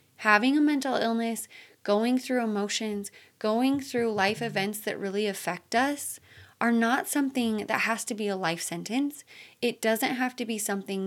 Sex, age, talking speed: female, 20-39, 170 wpm